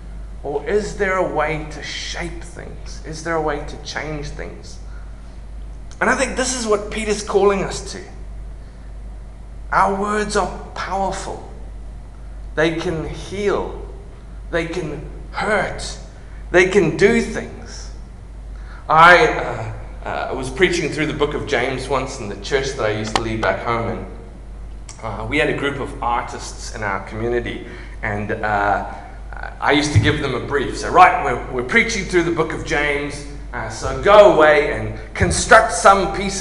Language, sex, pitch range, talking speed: English, male, 125-165 Hz, 165 wpm